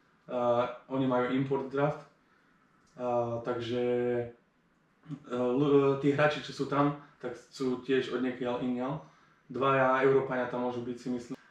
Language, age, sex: Slovak, 20-39, male